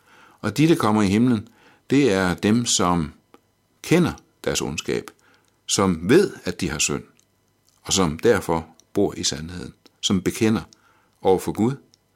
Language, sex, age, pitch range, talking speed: Danish, male, 60-79, 90-110 Hz, 150 wpm